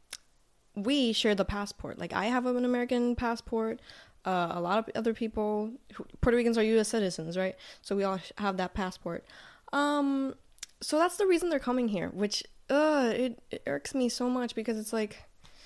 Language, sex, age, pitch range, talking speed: Spanish, female, 10-29, 205-275 Hz, 185 wpm